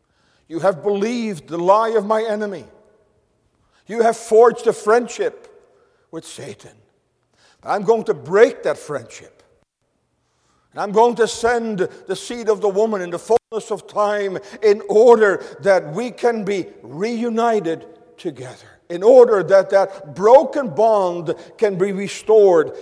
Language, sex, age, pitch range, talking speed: English, male, 50-69, 175-230 Hz, 140 wpm